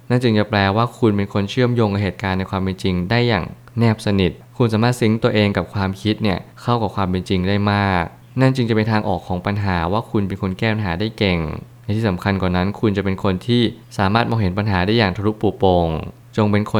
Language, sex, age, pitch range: Thai, male, 20-39, 95-115 Hz